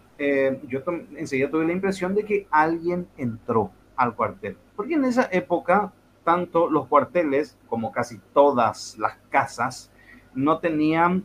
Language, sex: English, male